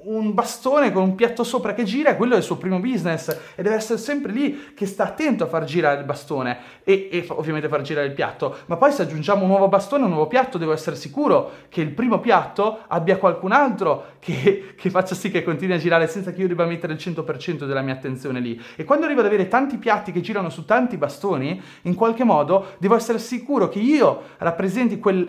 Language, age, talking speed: Italian, 30-49, 230 wpm